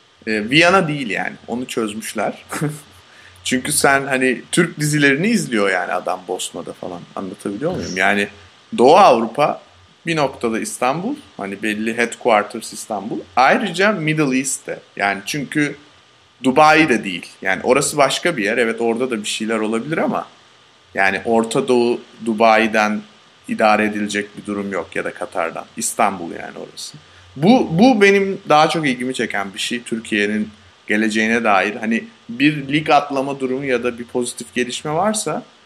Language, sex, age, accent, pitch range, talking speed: Turkish, male, 30-49, native, 110-150 Hz, 140 wpm